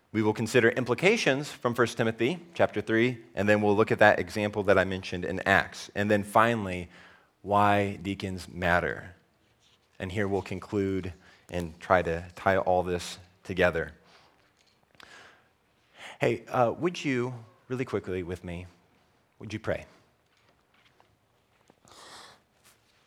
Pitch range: 90-105 Hz